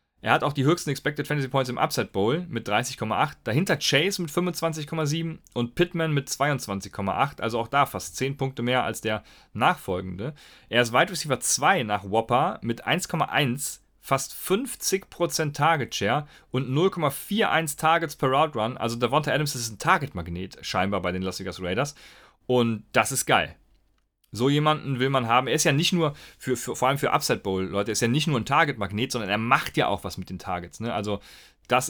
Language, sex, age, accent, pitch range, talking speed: German, male, 30-49, German, 100-145 Hz, 195 wpm